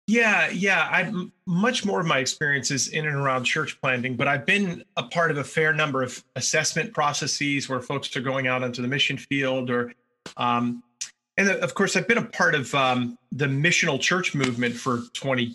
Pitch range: 130-170 Hz